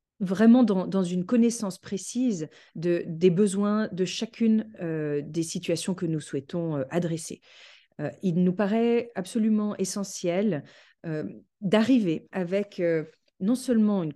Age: 40-59